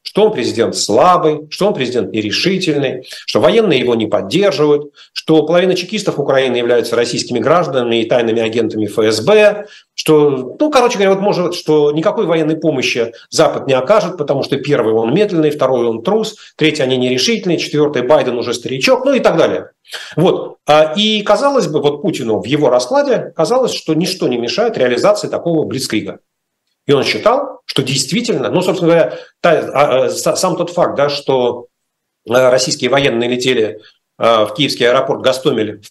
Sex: male